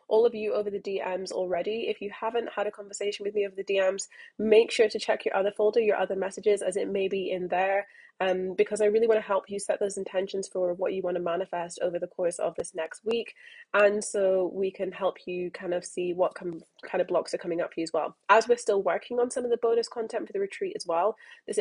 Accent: British